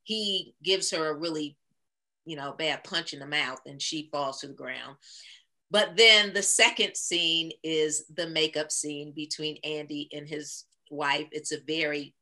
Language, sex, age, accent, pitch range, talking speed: English, female, 40-59, American, 155-205 Hz, 170 wpm